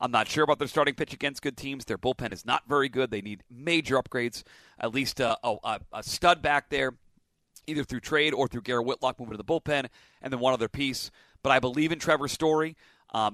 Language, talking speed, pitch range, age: English, 230 wpm, 125-155 Hz, 40-59